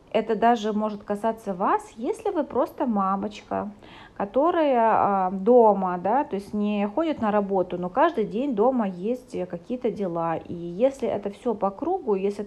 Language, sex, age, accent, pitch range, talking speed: Russian, female, 30-49, native, 185-235 Hz, 155 wpm